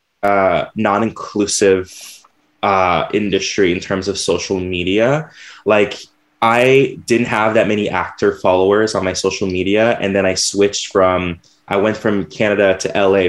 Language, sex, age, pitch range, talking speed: English, male, 10-29, 95-115 Hz, 140 wpm